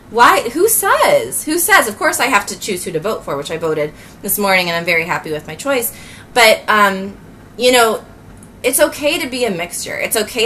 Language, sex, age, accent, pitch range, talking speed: English, female, 20-39, American, 180-235 Hz, 225 wpm